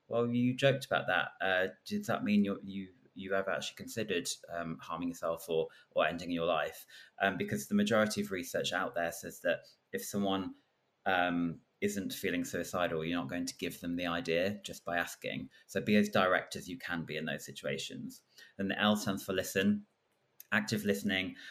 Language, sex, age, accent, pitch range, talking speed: English, male, 30-49, British, 85-100 Hz, 195 wpm